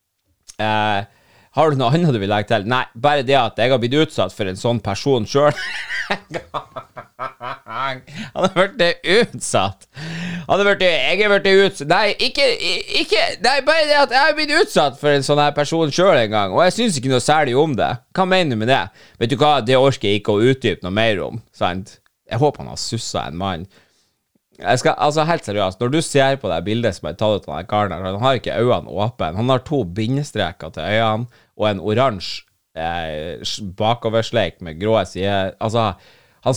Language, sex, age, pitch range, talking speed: English, male, 20-39, 100-150 Hz, 200 wpm